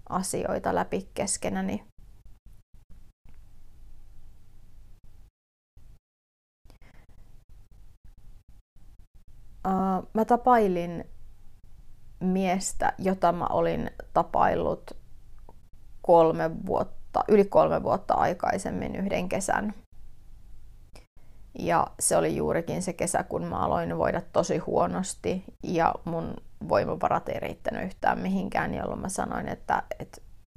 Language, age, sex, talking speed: Finnish, 30-49, female, 80 wpm